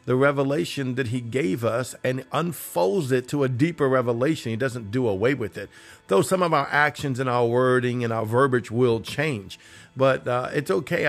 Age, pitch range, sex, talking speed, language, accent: 50-69, 130-170 Hz, male, 195 wpm, English, American